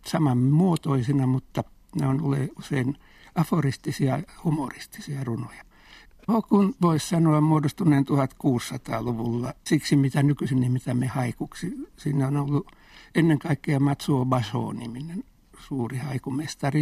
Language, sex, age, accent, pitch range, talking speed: Finnish, male, 60-79, native, 135-160 Hz, 110 wpm